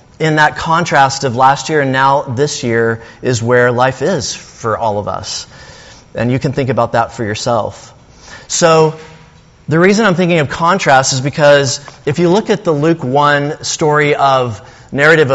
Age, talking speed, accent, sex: 30-49, 175 wpm, American, male